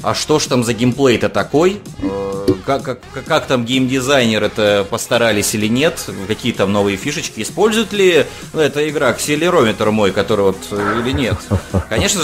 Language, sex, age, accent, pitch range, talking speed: Russian, male, 20-39, native, 95-125 Hz, 160 wpm